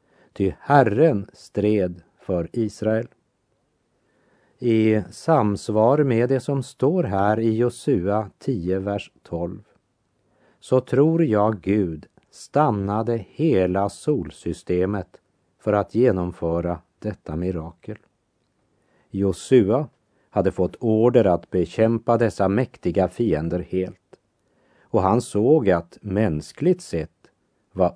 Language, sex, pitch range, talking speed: Dutch, male, 90-120 Hz, 100 wpm